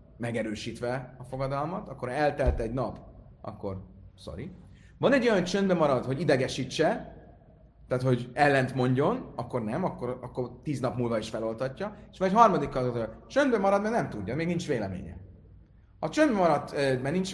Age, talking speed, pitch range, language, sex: 30-49, 160 wpm, 115-190 Hz, Hungarian, male